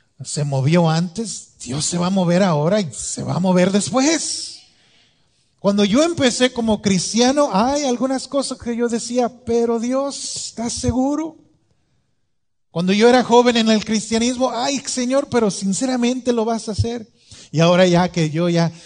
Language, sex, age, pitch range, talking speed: English, male, 40-59, 150-225 Hz, 160 wpm